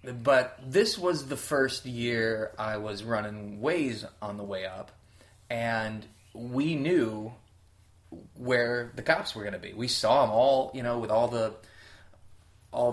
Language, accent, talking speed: English, American, 160 wpm